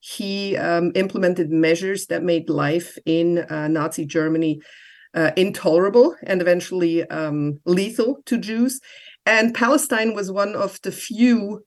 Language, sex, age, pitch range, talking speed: English, female, 50-69, 170-225 Hz, 135 wpm